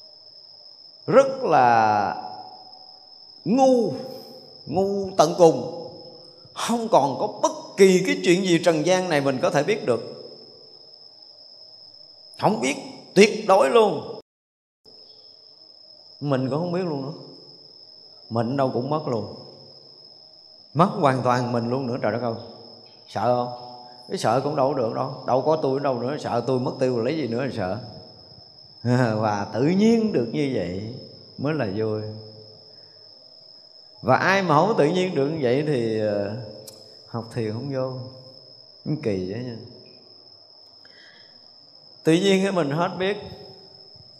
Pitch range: 120-185 Hz